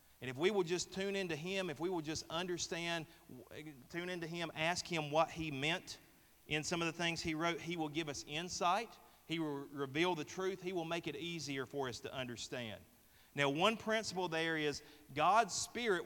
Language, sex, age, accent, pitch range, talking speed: English, male, 30-49, American, 135-170 Hz, 200 wpm